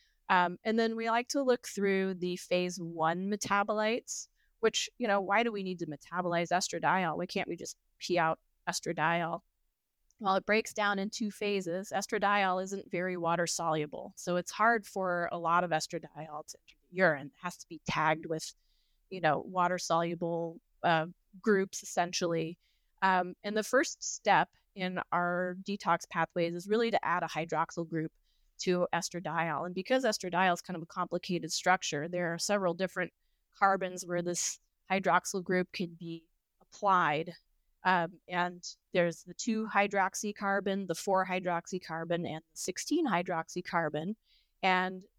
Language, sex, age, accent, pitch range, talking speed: English, female, 30-49, American, 170-200 Hz, 160 wpm